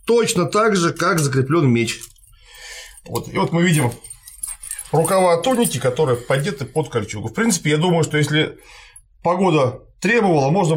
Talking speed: 145 wpm